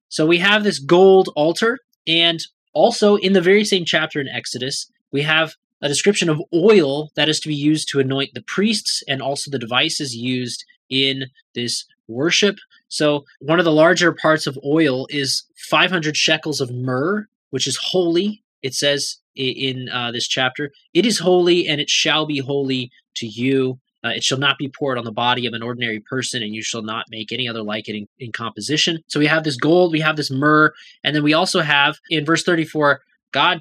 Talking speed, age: 200 wpm, 20-39